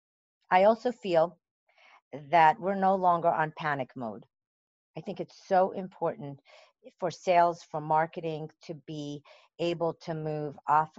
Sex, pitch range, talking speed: female, 145-180 Hz, 135 wpm